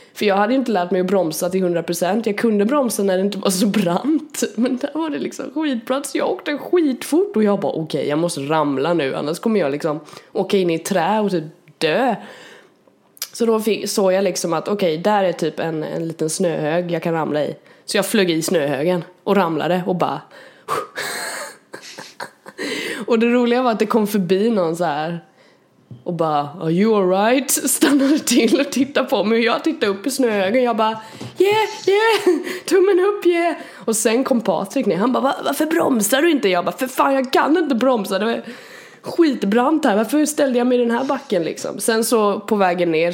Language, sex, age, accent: Swedish, female, 20-39, native